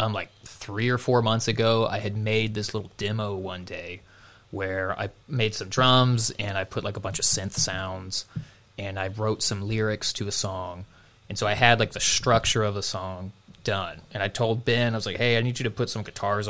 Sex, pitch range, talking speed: male, 100-120 Hz, 230 wpm